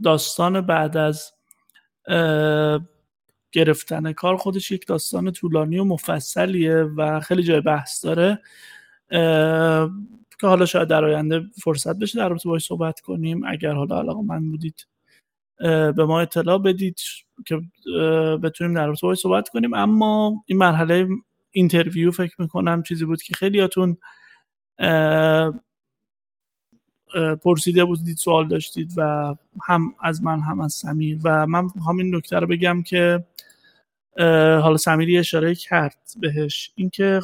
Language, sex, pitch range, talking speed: Persian, male, 155-185 Hz, 125 wpm